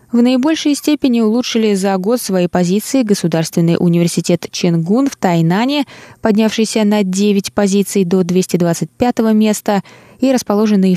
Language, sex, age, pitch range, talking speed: Russian, female, 20-39, 180-235 Hz, 120 wpm